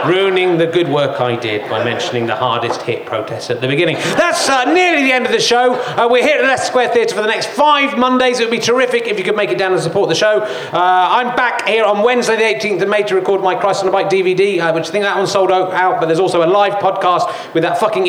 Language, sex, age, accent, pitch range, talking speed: English, male, 40-59, British, 160-220 Hz, 280 wpm